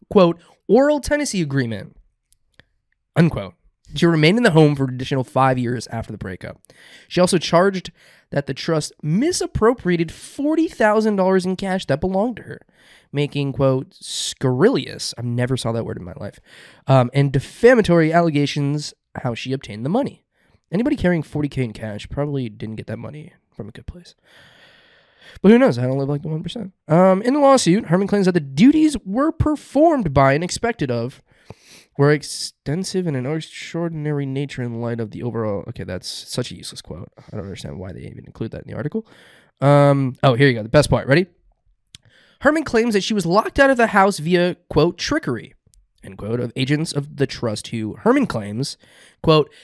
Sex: male